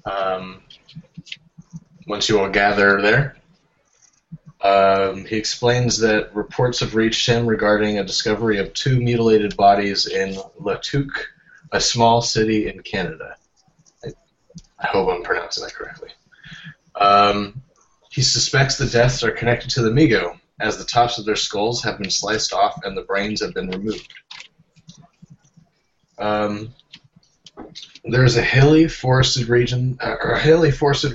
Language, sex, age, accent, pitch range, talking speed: English, male, 20-39, American, 105-145 Hz, 140 wpm